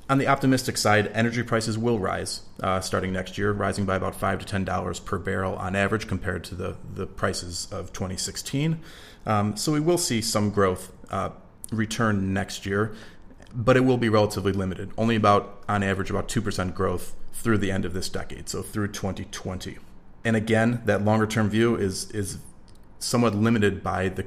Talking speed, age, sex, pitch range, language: 185 wpm, 30-49, male, 95-110 Hz, English